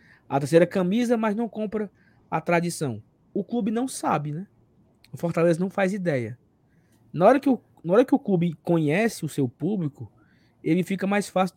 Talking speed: 165 wpm